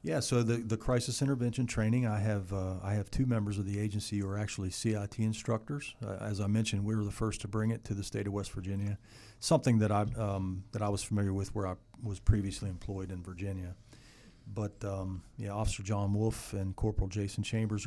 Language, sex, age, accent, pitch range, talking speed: English, male, 40-59, American, 100-115 Hz, 220 wpm